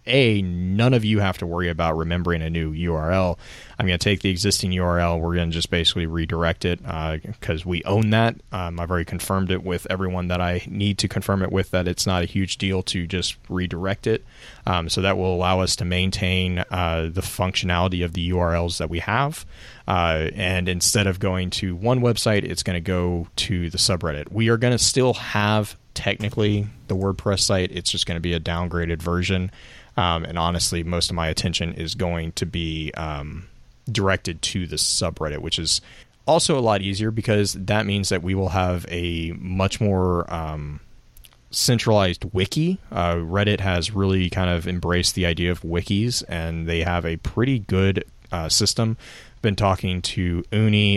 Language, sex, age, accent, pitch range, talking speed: English, male, 30-49, American, 85-100 Hz, 185 wpm